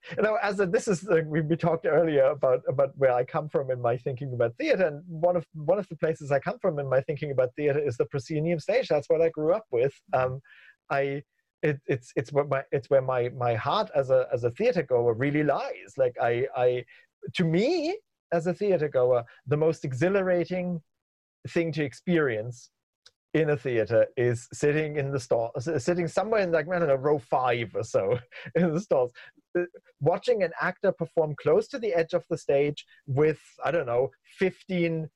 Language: English